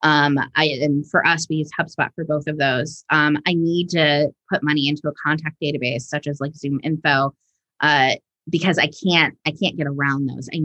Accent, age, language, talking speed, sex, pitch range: American, 20-39, English, 210 wpm, female, 150-175 Hz